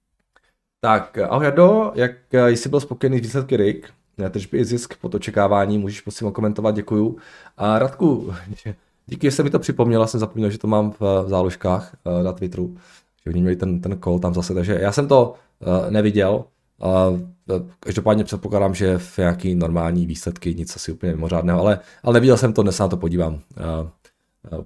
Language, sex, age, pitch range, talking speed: Czech, male, 20-39, 90-120 Hz, 175 wpm